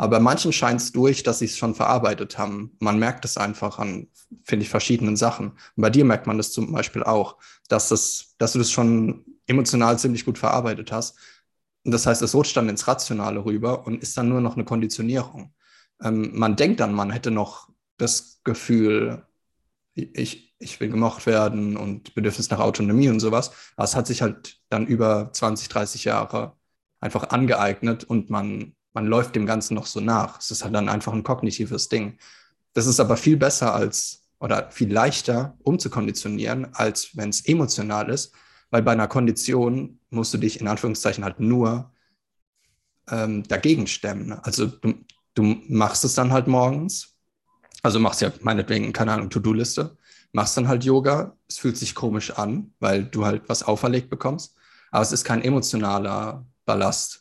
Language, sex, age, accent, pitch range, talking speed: German, male, 20-39, German, 105-125 Hz, 175 wpm